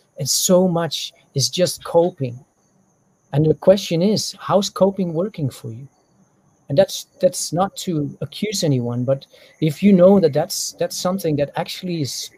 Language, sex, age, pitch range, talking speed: English, male, 40-59, 145-185 Hz, 160 wpm